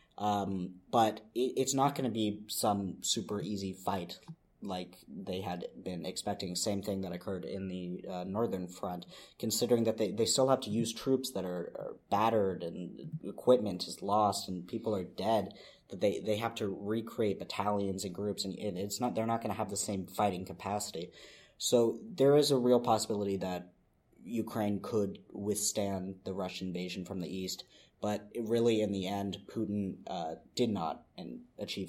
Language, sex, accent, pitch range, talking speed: English, male, American, 95-115 Hz, 175 wpm